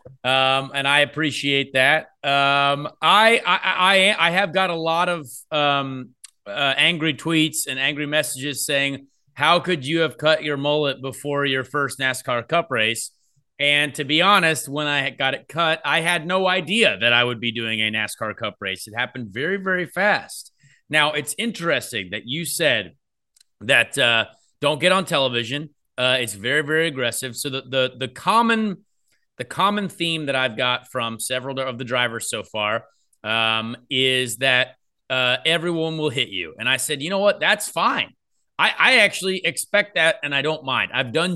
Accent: American